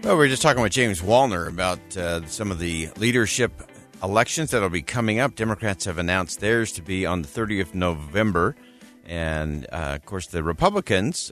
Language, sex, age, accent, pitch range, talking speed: English, male, 50-69, American, 85-110 Hz, 195 wpm